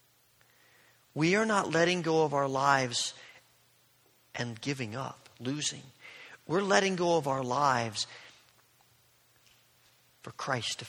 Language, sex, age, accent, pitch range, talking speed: English, male, 50-69, American, 125-180 Hz, 115 wpm